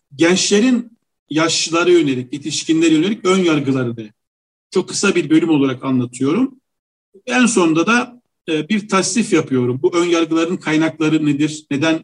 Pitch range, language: 150-215 Hz, Turkish